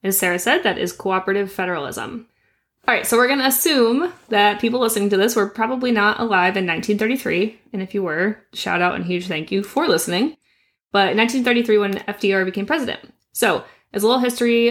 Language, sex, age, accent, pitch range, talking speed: English, female, 20-39, American, 190-230 Hz, 195 wpm